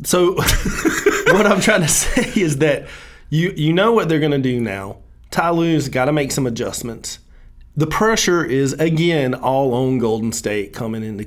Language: English